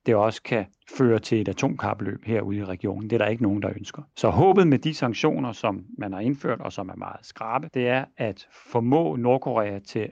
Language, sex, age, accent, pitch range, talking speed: Danish, male, 40-59, native, 105-135 Hz, 220 wpm